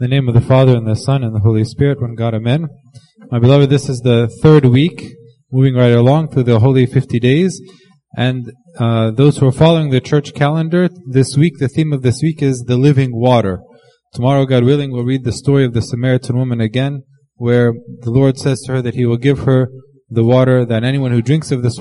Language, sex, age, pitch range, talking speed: English, male, 20-39, 120-150 Hz, 225 wpm